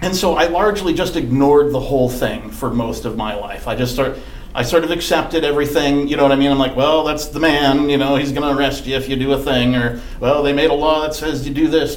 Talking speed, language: 275 wpm, English